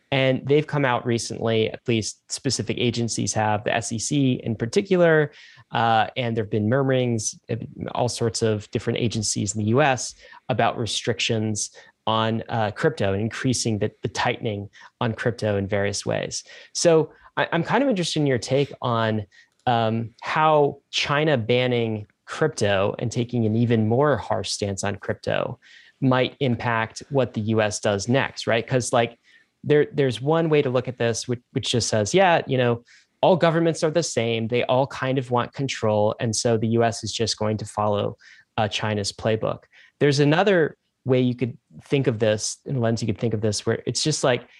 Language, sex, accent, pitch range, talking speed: English, male, American, 110-135 Hz, 180 wpm